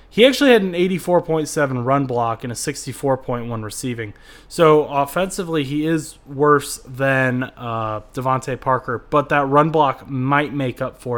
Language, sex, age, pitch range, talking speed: English, male, 20-39, 115-140 Hz, 145 wpm